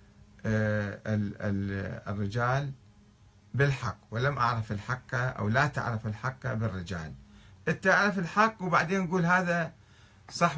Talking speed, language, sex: 90 wpm, Arabic, male